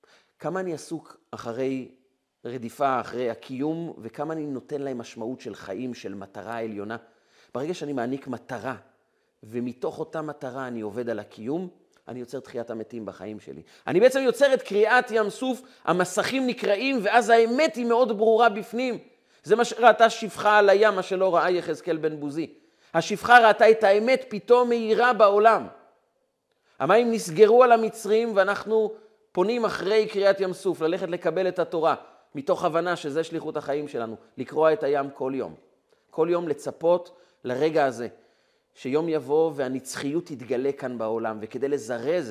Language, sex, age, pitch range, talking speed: Hebrew, male, 40-59, 135-210 Hz, 150 wpm